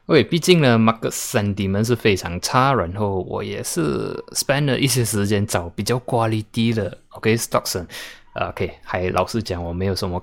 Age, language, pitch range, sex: 20-39, Chinese, 95-130 Hz, male